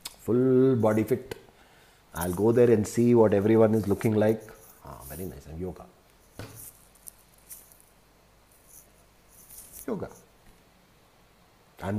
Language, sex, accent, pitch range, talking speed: English, male, Indian, 95-140 Hz, 100 wpm